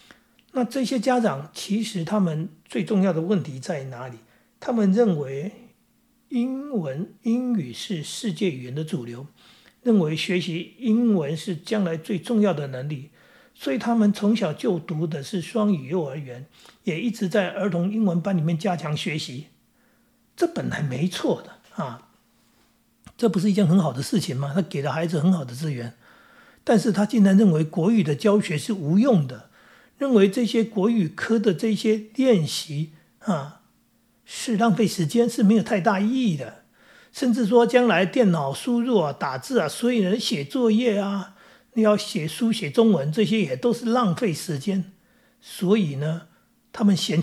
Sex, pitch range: male, 170-235 Hz